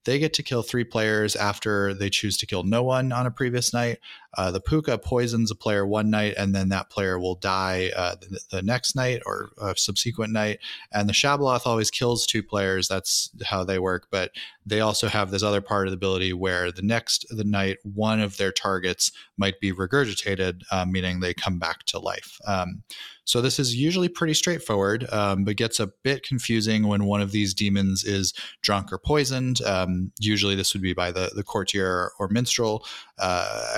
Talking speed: 205 wpm